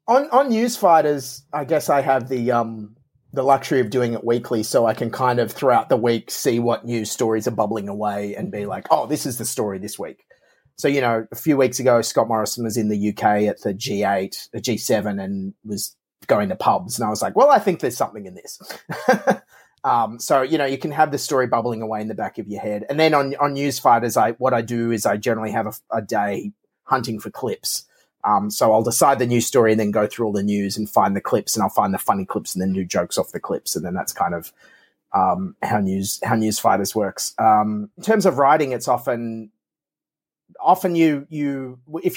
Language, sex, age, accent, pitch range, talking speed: English, male, 30-49, Australian, 110-145 Hz, 235 wpm